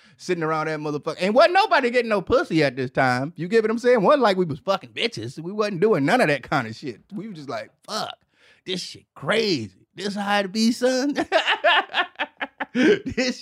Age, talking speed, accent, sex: 30-49, 220 wpm, American, male